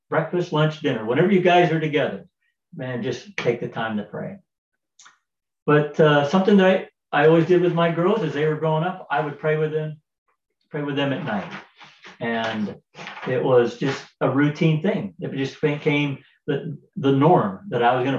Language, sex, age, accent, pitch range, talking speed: English, male, 50-69, American, 135-175 Hz, 190 wpm